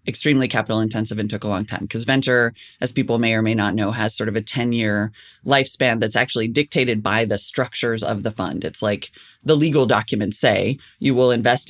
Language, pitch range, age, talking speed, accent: English, 110-135 Hz, 20-39, 215 wpm, American